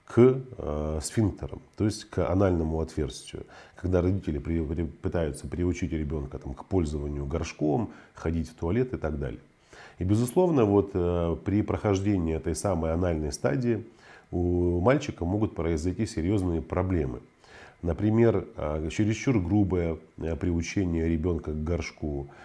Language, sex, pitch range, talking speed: Russian, male, 80-105 Hz, 110 wpm